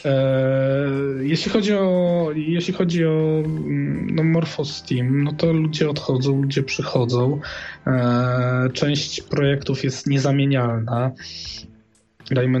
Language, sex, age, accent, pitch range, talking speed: Polish, male, 20-39, native, 130-160 Hz, 85 wpm